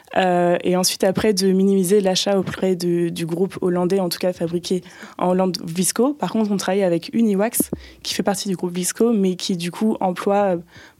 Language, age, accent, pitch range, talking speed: French, 20-39, French, 180-210 Hz, 200 wpm